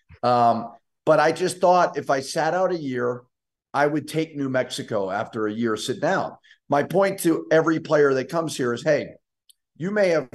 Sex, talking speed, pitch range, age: male, 195 wpm, 130-165 Hz, 50-69